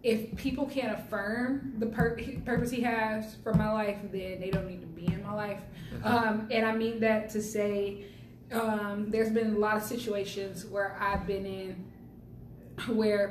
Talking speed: 180 wpm